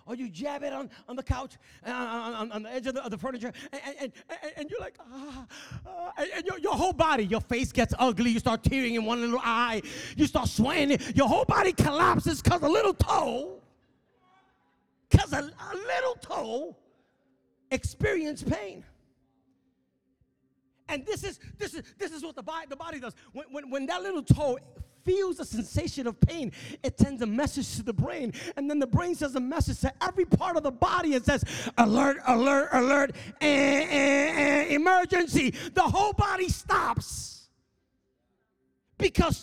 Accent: American